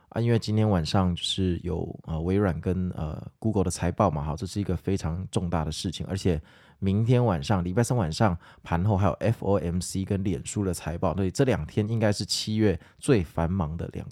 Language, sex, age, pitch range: Chinese, male, 20-39, 90-110 Hz